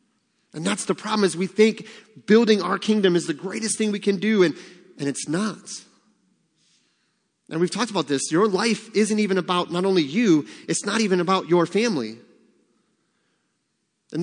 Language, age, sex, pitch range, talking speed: English, 30-49, male, 175-210 Hz, 175 wpm